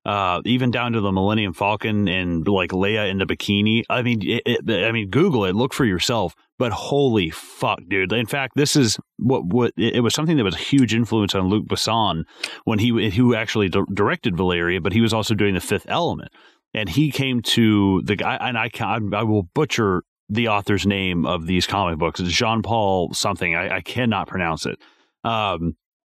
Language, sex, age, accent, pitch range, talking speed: English, male, 30-49, American, 95-120 Hz, 205 wpm